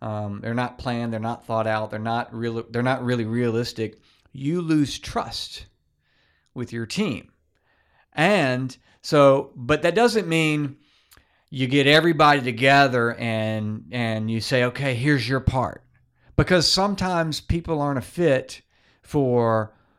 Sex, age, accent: male, 40-59, American